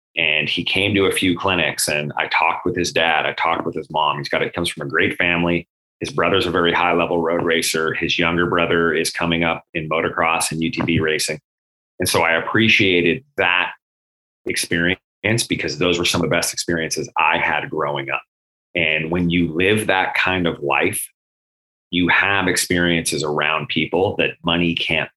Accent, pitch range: American, 80-90 Hz